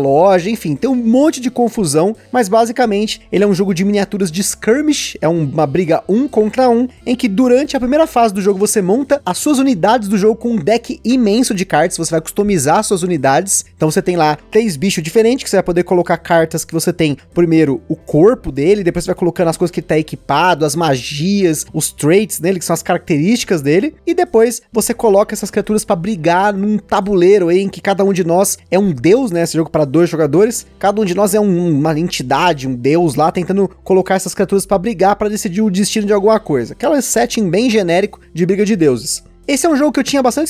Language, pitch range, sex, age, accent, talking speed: Portuguese, 180-230 Hz, male, 20-39, Brazilian, 235 wpm